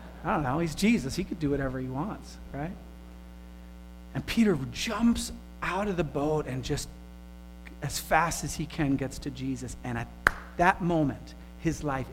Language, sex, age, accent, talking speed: English, male, 40-59, American, 175 wpm